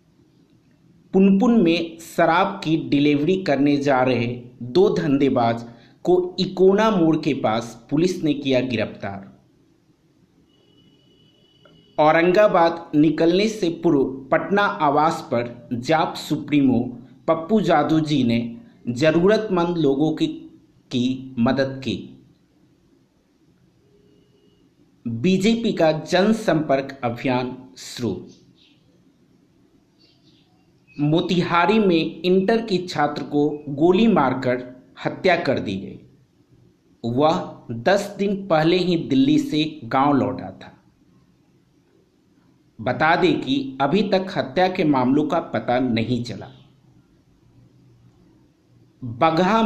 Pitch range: 125-175 Hz